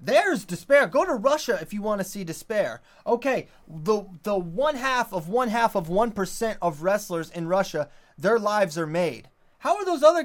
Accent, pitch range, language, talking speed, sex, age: American, 180-245 Hz, English, 200 wpm, male, 30-49